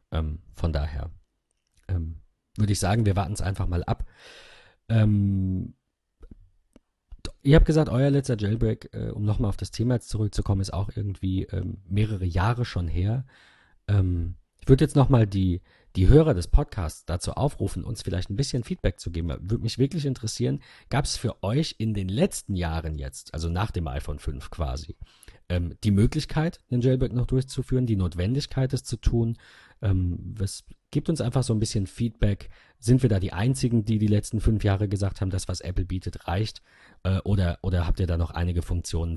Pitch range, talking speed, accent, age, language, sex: 85-115 Hz, 180 wpm, German, 40-59, German, male